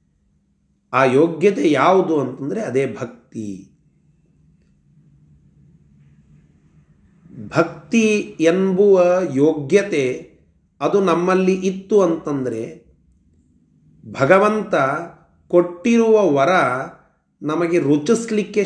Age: 40-59